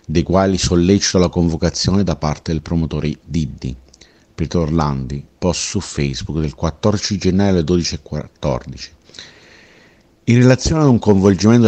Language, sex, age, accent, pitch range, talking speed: Italian, male, 50-69, native, 75-95 Hz, 130 wpm